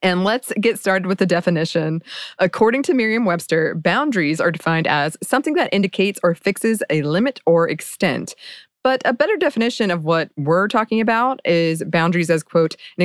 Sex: female